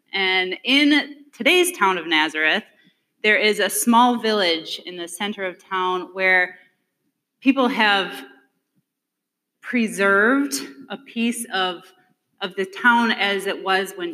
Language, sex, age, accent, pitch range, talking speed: English, female, 30-49, American, 190-260 Hz, 125 wpm